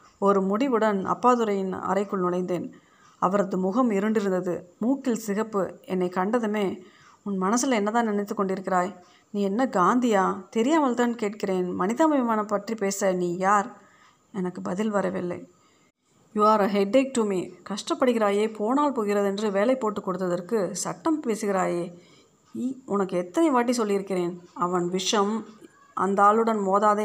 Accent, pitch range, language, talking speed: native, 185-230 Hz, Tamil, 120 wpm